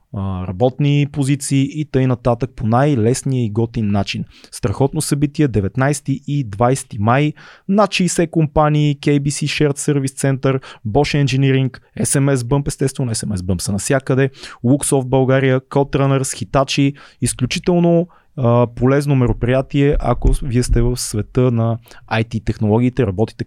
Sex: male